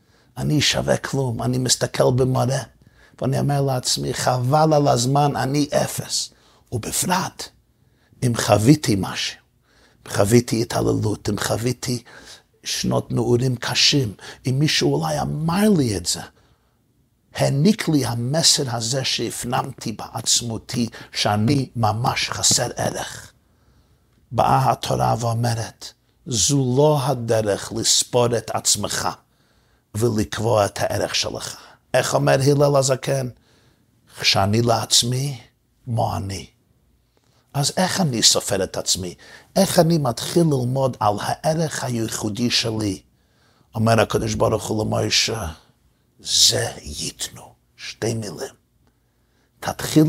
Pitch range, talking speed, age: 115-140 Hz, 105 wpm, 50-69